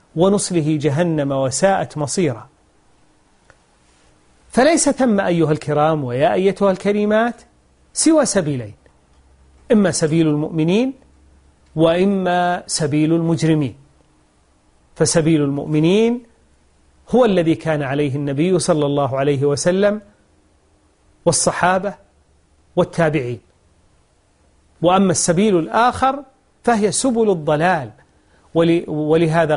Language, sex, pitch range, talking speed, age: Arabic, male, 140-195 Hz, 80 wpm, 40-59